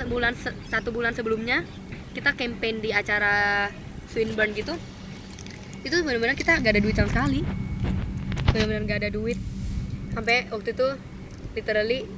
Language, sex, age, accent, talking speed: Indonesian, female, 10-29, native, 130 wpm